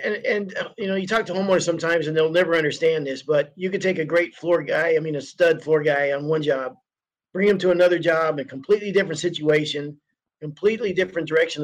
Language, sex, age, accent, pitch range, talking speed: English, male, 50-69, American, 160-200 Hz, 220 wpm